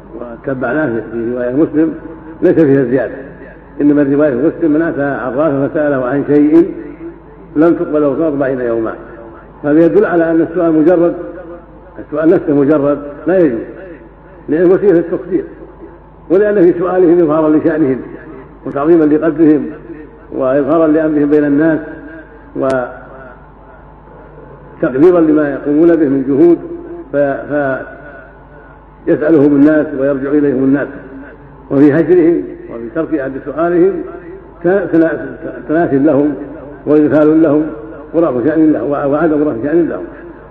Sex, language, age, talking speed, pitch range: male, Arabic, 60-79, 110 wpm, 145-170 Hz